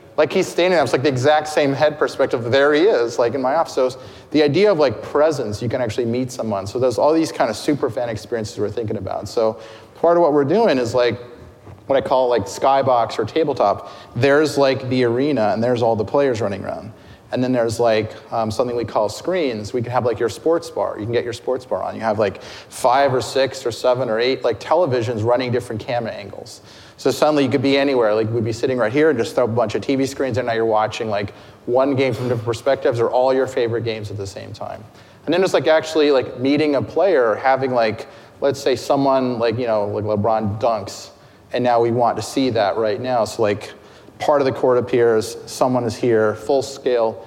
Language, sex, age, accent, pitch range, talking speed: English, male, 30-49, American, 115-140 Hz, 235 wpm